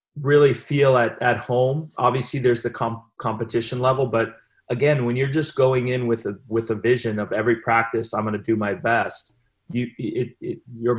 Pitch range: 110-125 Hz